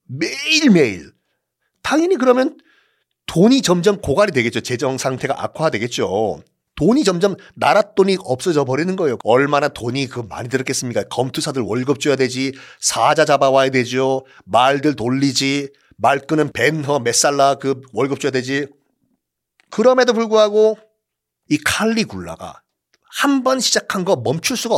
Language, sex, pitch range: Korean, male, 130-205 Hz